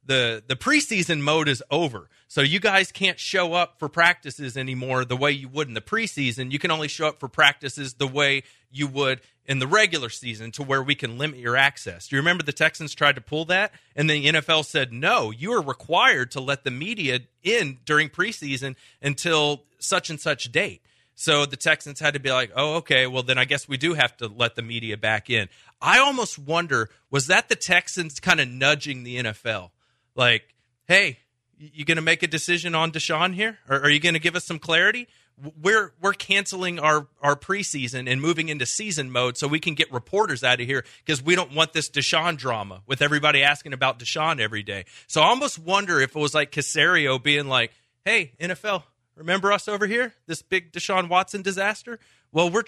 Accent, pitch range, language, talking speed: American, 130-175 Hz, English, 210 wpm